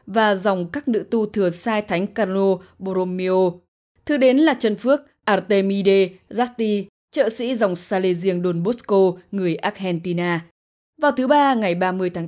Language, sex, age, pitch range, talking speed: English, female, 10-29, 185-245 Hz, 150 wpm